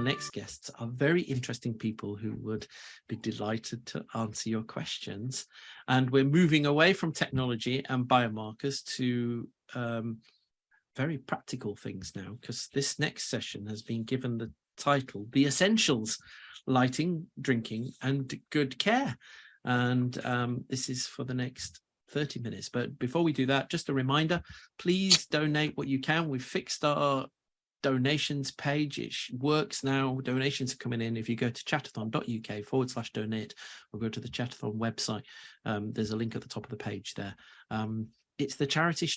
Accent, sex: British, male